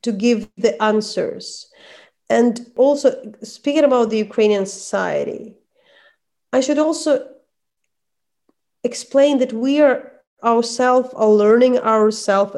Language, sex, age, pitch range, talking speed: English, female, 30-49, 210-260 Hz, 105 wpm